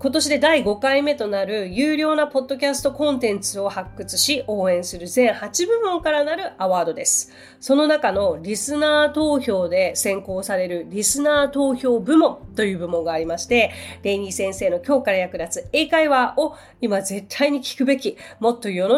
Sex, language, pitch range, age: female, Japanese, 200-295 Hz, 30-49